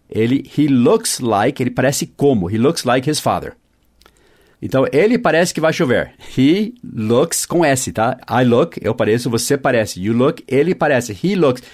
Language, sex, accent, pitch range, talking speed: English, male, Brazilian, 120-165 Hz, 180 wpm